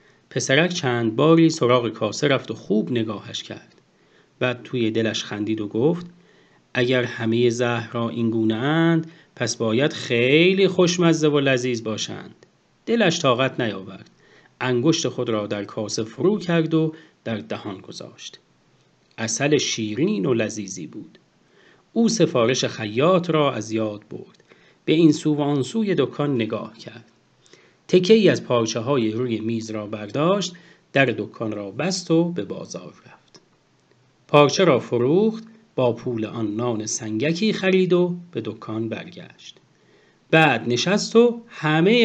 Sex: male